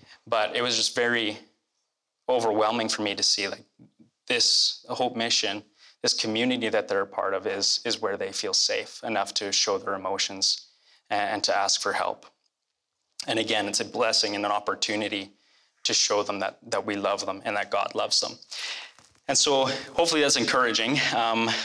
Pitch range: 105-120 Hz